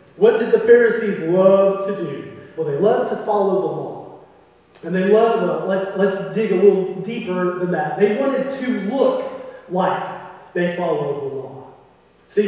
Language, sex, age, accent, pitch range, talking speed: English, male, 30-49, American, 195-245 Hz, 175 wpm